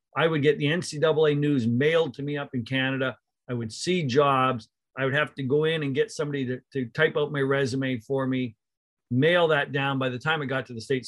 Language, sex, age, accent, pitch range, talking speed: English, male, 50-69, American, 120-145 Hz, 240 wpm